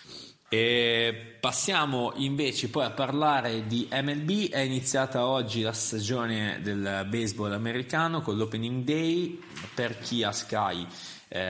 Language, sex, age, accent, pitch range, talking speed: Italian, male, 20-39, native, 100-135 Hz, 125 wpm